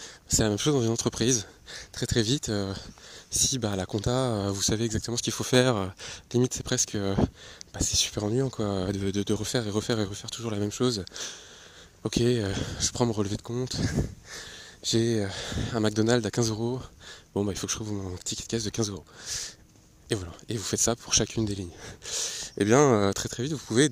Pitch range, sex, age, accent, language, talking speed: 100-125 Hz, male, 20-39, French, French, 230 wpm